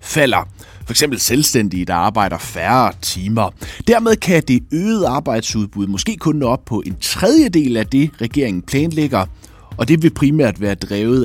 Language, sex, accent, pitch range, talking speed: Danish, male, native, 95-145 Hz, 160 wpm